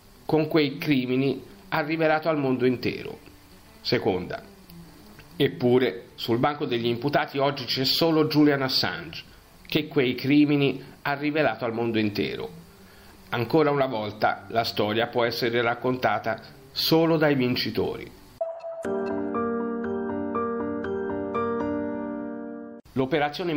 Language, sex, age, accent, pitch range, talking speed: Italian, male, 50-69, native, 110-150 Hz, 100 wpm